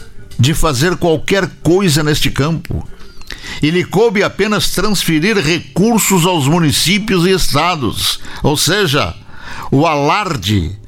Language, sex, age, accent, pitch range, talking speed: Portuguese, male, 60-79, Brazilian, 115-180 Hz, 105 wpm